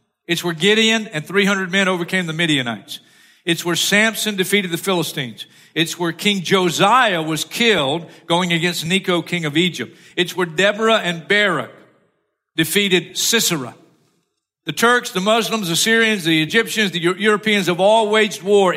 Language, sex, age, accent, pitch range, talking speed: English, male, 50-69, American, 170-220 Hz, 155 wpm